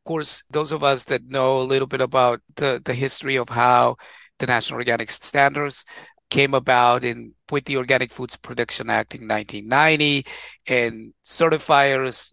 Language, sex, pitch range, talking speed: English, male, 125-145 Hz, 165 wpm